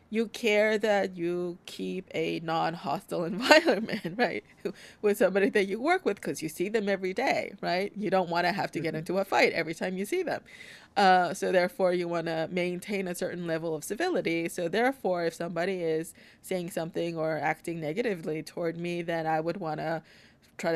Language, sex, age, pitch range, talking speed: English, female, 30-49, 160-200 Hz, 195 wpm